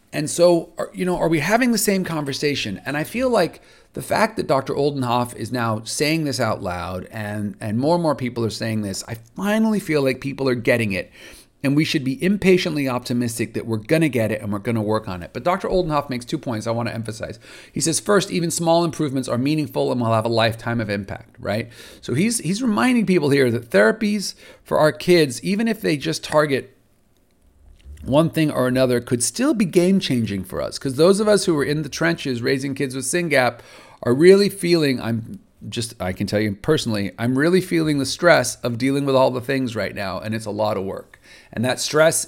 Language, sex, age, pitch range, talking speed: English, male, 40-59, 110-160 Hz, 225 wpm